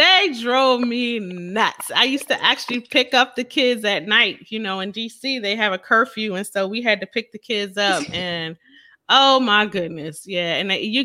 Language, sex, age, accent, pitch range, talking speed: English, female, 30-49, American, 170-225 Hz, 205 wpm